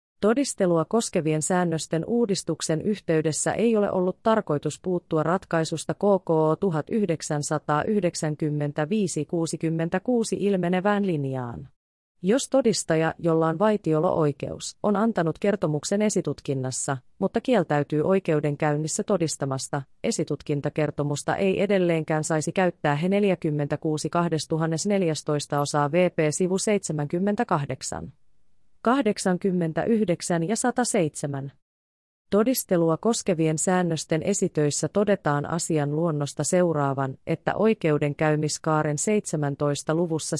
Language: Finnish